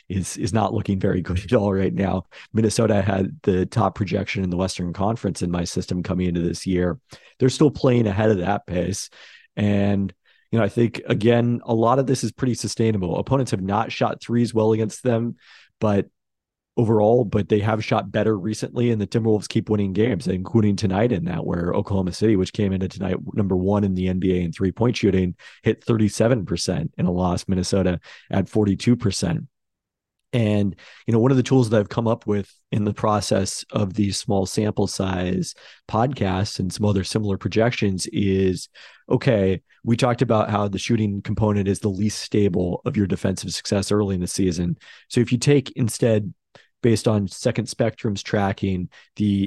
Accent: American